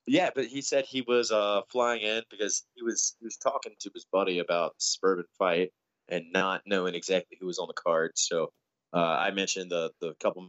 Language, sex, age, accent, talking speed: English, male, 20-39, American, 215 wpm